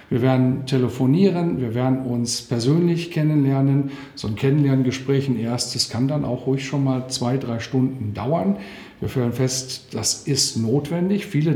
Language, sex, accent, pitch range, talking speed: German, male, German, 125-145 Hz, 155 wpm